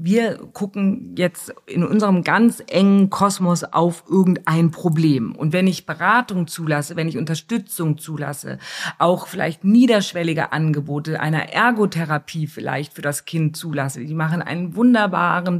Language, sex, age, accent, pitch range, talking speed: German, female, 50-69, German, 150-190 Hz, 135 wpm